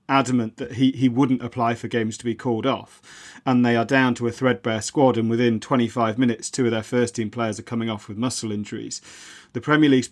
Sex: male